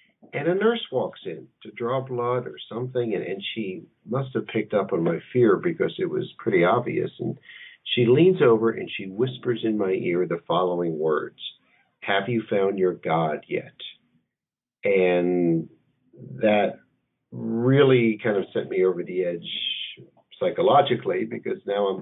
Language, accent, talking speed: English, American, 160 wpm